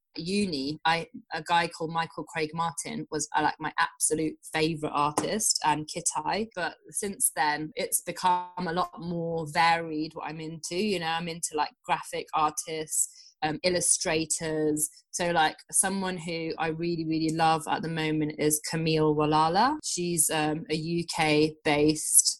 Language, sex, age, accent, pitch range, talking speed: English, female, 20-39, British, 155-175 Hz, 160 wpm